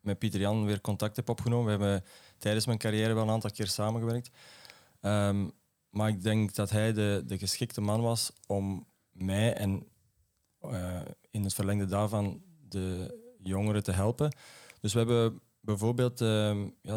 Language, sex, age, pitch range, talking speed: Dutch, male, 20-39, 100-115 Hz, 150 wpm